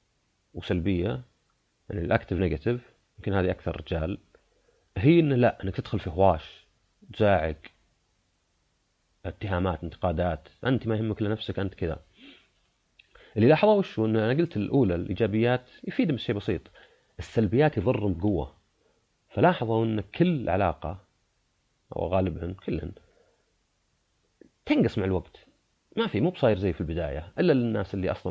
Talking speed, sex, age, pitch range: 125 wpm, male, 30-49, 85-115 Hz